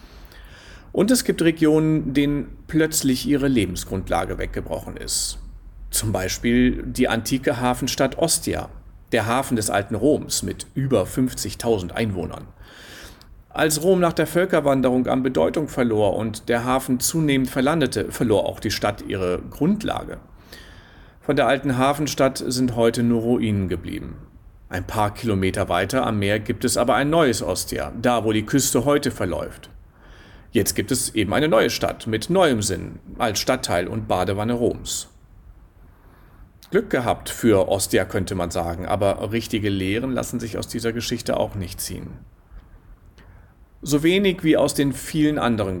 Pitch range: 95-130 Hz